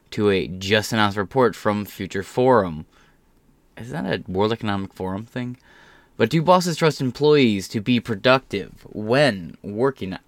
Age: 20-39